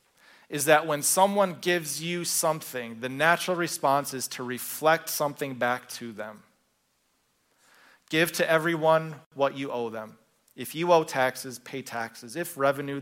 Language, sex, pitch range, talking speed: English, male, 125-160 Hz, 145 wpm